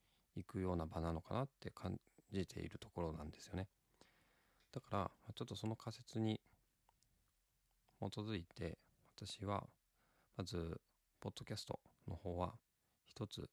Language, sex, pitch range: Japanese, male, 90-115 Hz